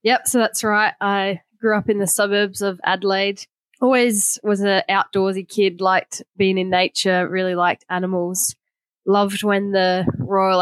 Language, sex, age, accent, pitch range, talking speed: English, female, 10-29, Australian, 180-205 Hz, 160 wpm